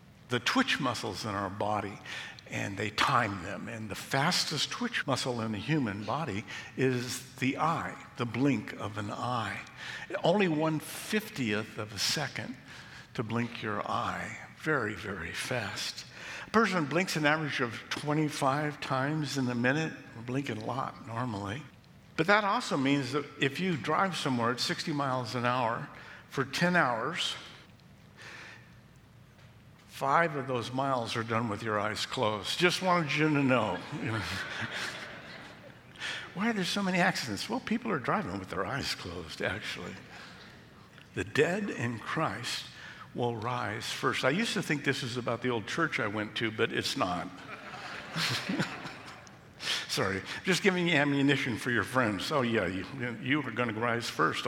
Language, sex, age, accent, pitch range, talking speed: English, male, 60-79, American, 120-155 Hz, 155 wpm